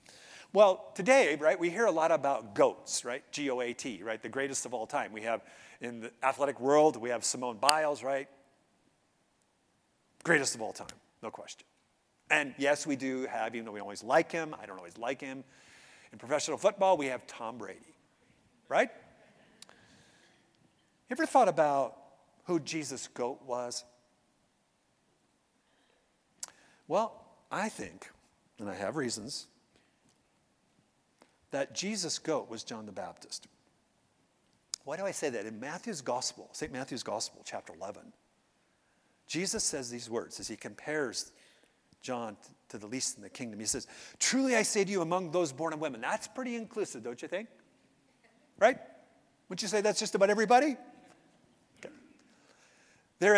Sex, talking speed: male, 150 wpm